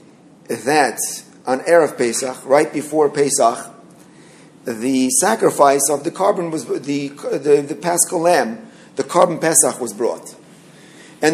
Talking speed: 130 wpm